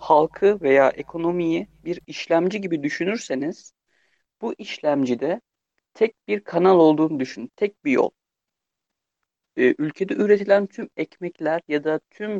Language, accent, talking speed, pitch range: Turkish, native, 115 wpm, 150-200 Hz